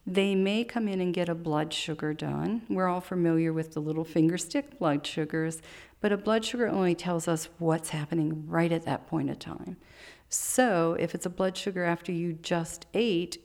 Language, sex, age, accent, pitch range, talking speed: English, female, 50-69, American, 160-195 Hz, 200 wpm